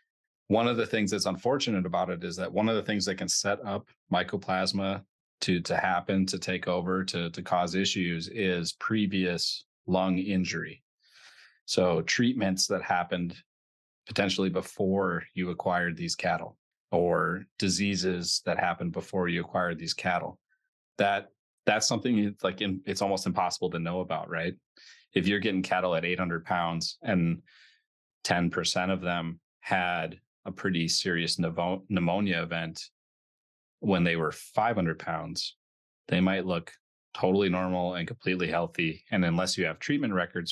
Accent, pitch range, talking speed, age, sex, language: American, 85-95 Hz, 155 wpm, 30-49, male, English